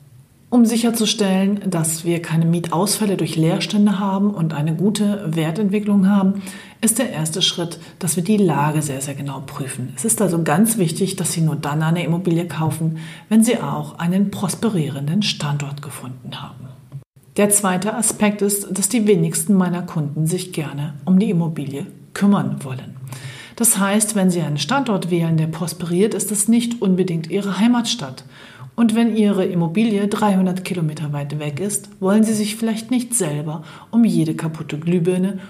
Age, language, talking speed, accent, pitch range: 40-59, German, 160 wpm, German, 155-205 Hz